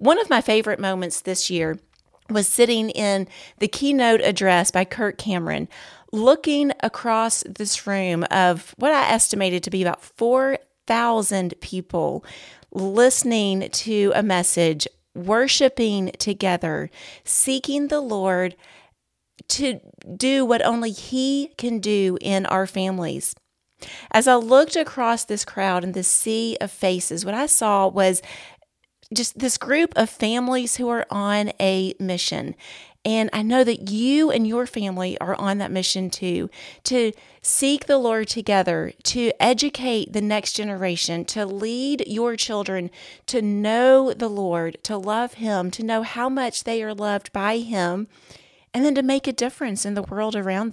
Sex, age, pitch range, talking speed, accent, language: female, 40-59, 190-245 Hz, 150 wpm, American, English